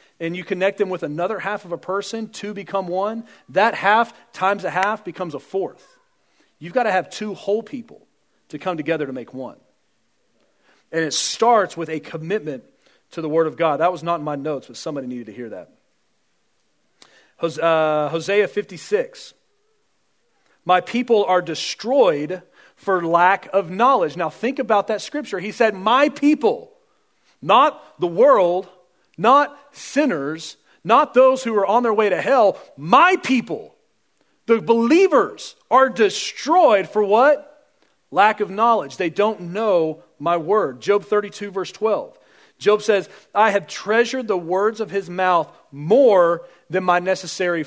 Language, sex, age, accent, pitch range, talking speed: English, male, 40-59, American, 165-230 Hz, 155 wpm